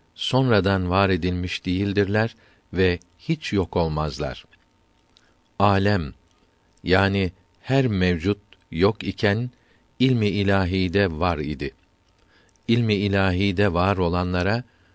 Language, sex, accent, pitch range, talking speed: Turkish, male, native, 90-105 Hz, 90 wpm